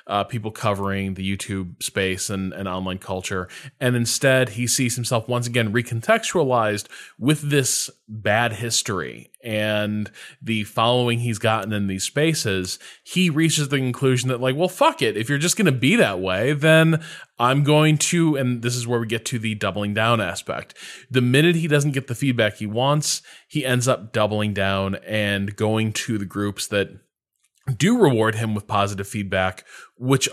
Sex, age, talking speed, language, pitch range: male, 20-39, 175 wpm, English, 100-130 Hz